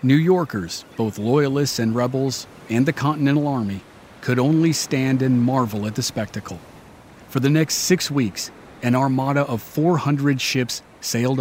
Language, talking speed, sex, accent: English, 155 wpm, male, American